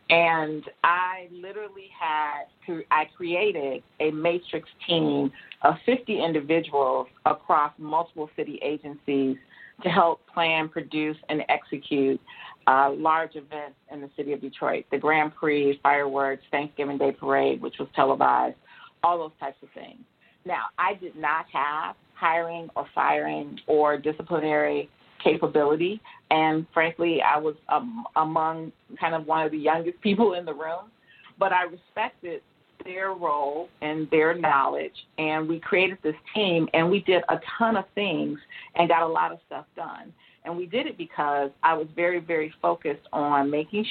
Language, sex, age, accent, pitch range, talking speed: English, female, 40-59, American, 145-175 Hz, 150 wpm